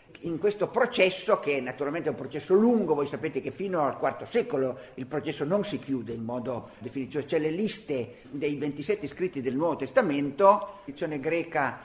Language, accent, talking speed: Italian, native, 185 wpm